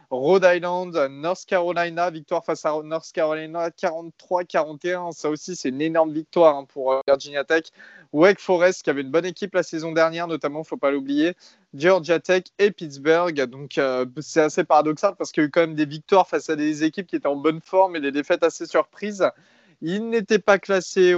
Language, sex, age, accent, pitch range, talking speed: French, male, 20-39, French, 150-180 Hz, 200 wpm